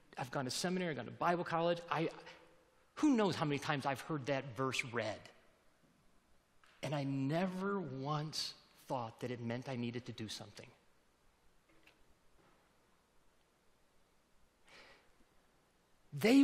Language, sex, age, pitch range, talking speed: English, male, 50-69, 135-195 Hz, 125 wpm